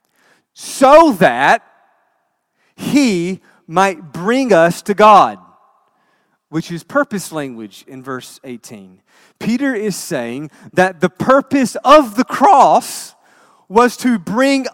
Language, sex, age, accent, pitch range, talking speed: English, male, 30-49, American, 190-260 Hz, 110 wpm